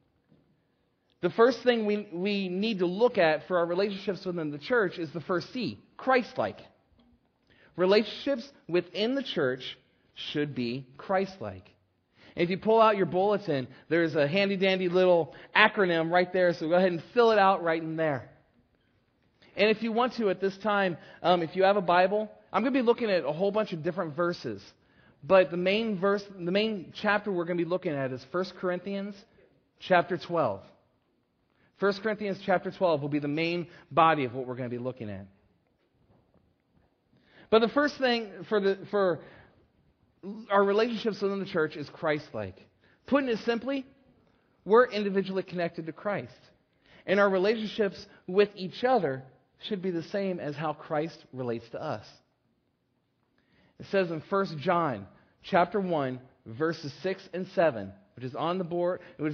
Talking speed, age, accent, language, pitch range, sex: 165 wpm, 30-49, American, English, 155-200 Hz, male